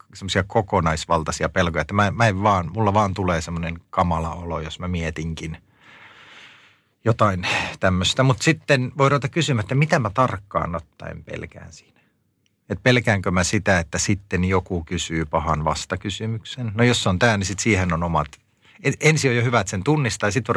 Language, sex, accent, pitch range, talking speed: Finnish, male, native, 85-120 Hz, 170 wpm